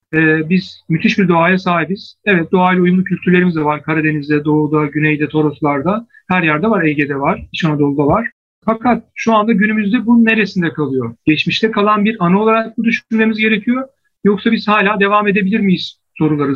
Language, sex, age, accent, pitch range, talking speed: Turkish, male, 50-69, native, 160-215 Hz, 165 wpm